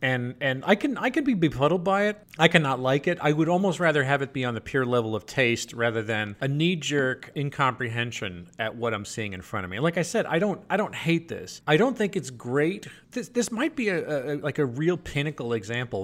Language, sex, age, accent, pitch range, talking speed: English, male, 30-49, American, 110-155 Hz, 250 wpm